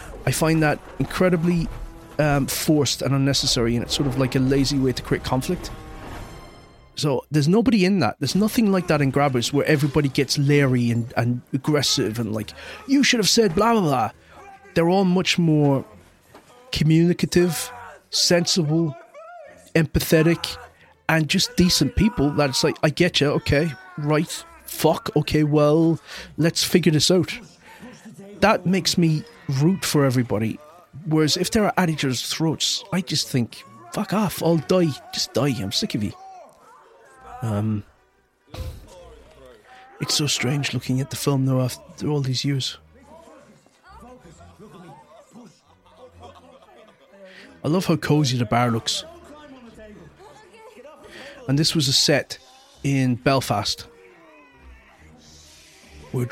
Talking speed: 135 wpm